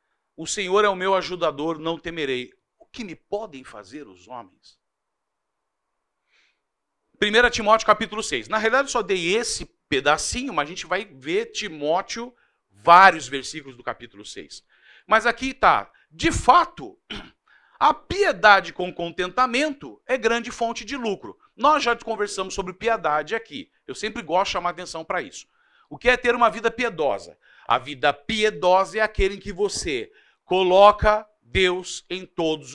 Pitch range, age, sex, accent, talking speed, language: 170-245 Hz, 50-69, male, Brazilian, 155 wpm, Portuguese